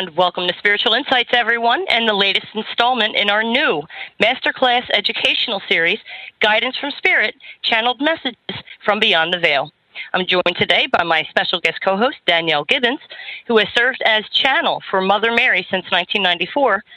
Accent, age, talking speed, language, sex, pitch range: American, 40-59, 155 wpm, English, female, 180-255 Hz